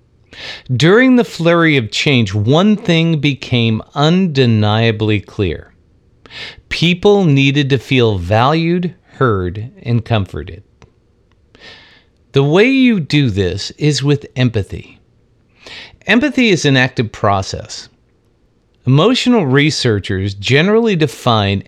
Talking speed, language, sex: 95 wpm, English, male